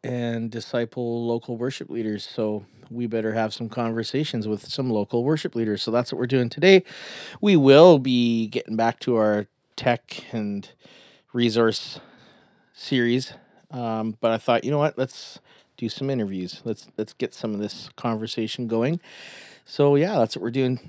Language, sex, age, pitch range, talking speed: English, male, 30-49, 115-175 Hz, 165 wpm